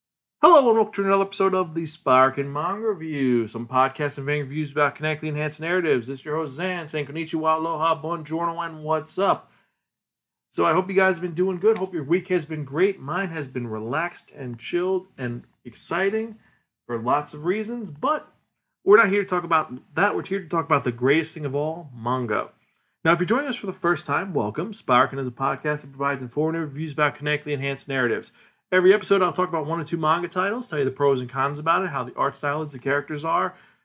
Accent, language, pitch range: American, English, 135-175 Hz